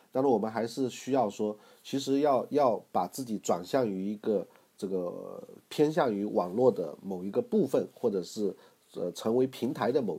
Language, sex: Chinese, male